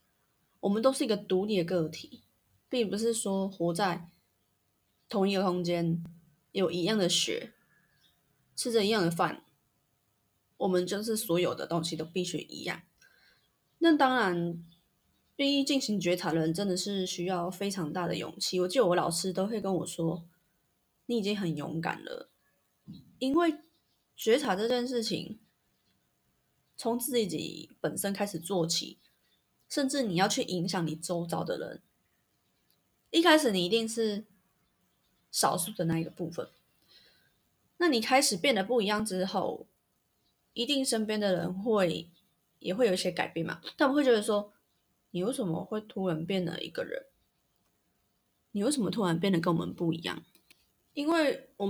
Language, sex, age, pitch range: Chinese, female, 20-39, 170-230 Hz